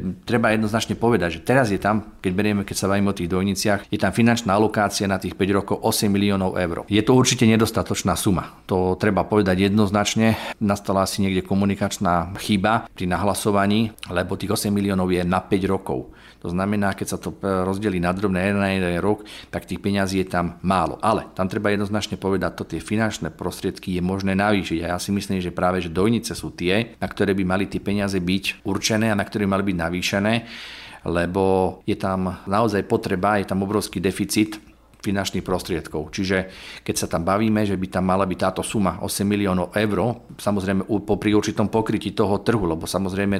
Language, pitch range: Slovak, 90-105 Hz